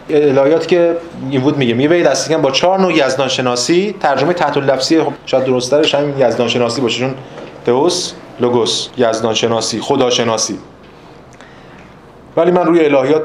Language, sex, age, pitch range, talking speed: Persian, male, 30-49, 125-160 Hz, 150 wpm